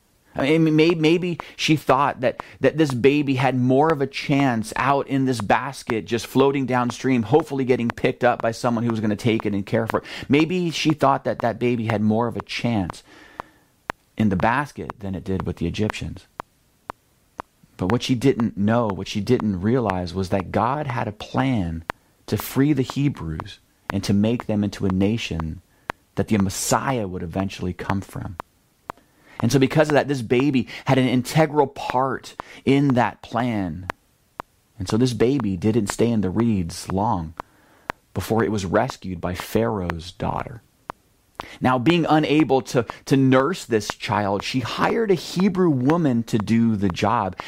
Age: 30-49